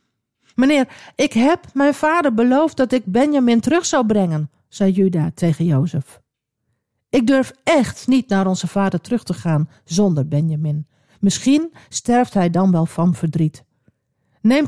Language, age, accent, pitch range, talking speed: Dutch, 50-69, Dutch, 145-240 Hz, 145 wpm